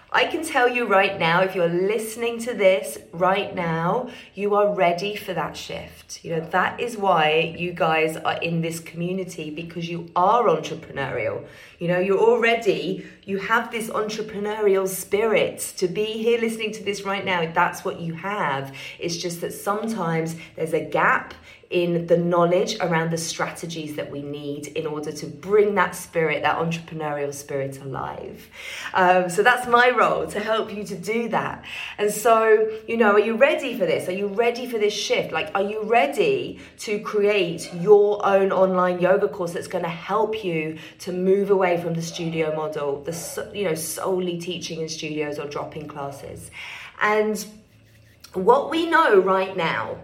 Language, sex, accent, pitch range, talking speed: English, female, British, 170-215 Hz, 175 wpm